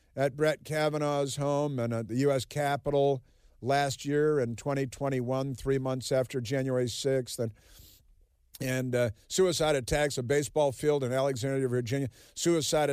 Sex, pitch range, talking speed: male, 125-155 Hz, 140 wpm